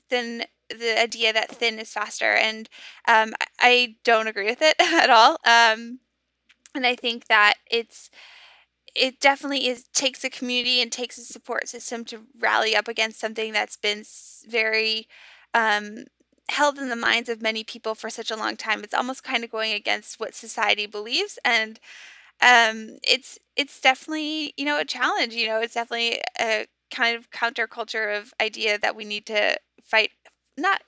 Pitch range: 220-260 Hz